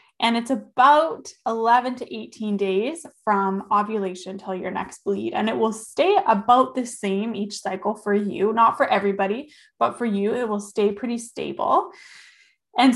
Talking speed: 165 wpm